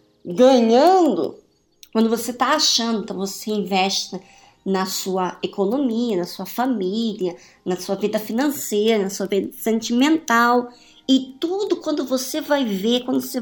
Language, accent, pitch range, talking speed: Portuguese, Brazilian, 195-270 Hz, 130 wpm